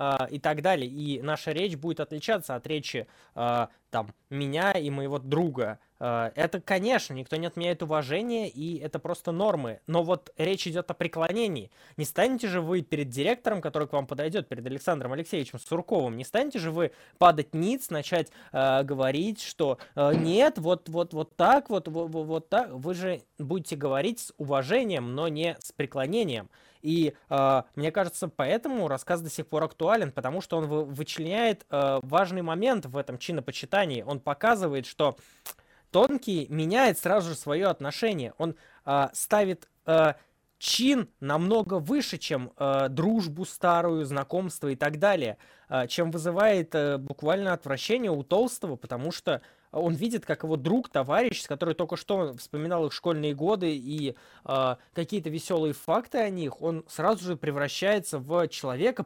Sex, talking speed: male, 150 wpm